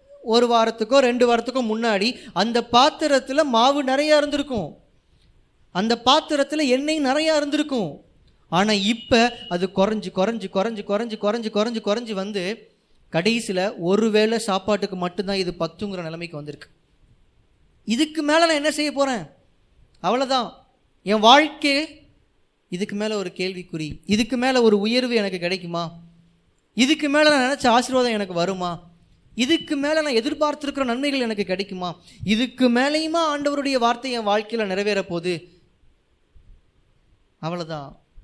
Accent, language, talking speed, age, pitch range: native, Tamil, 120 wpm, 20-39, 170-260 Hz